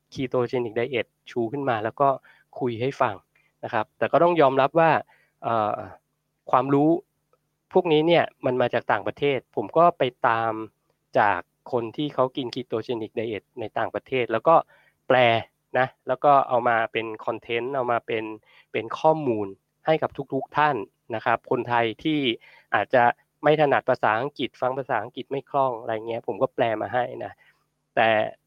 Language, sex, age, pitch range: Thai, male, 20-39, 120-150 Hz